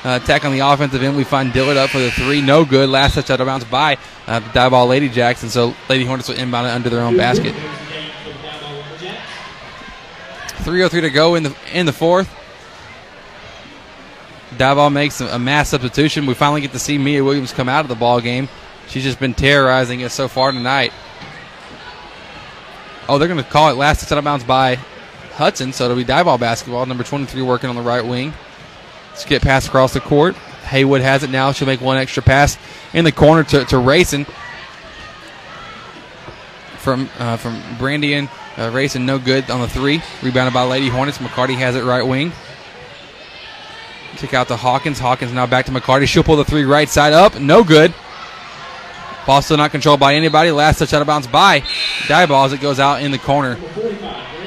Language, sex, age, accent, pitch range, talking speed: English, male, 20-39, American, 125-150 Hz, 200 wpm